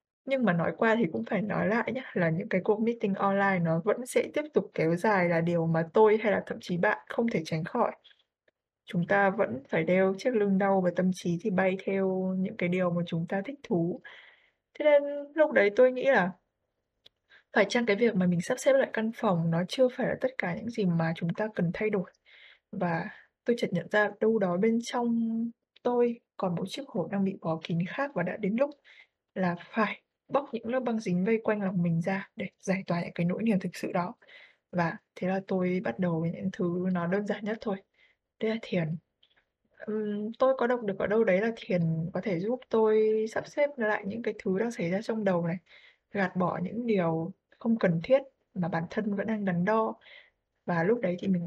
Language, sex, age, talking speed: Vietnamese, female, 20-39, 230 wpm